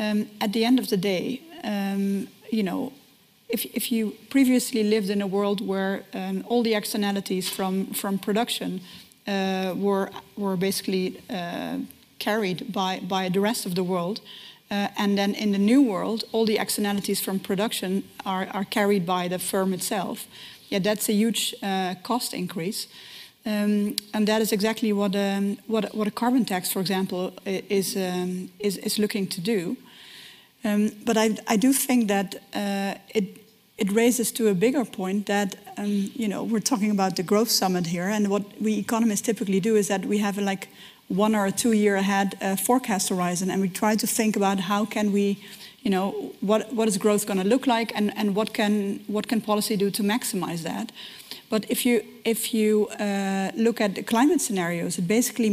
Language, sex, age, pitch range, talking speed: English, female, 40-59, 195-225 Hz, 190 wpm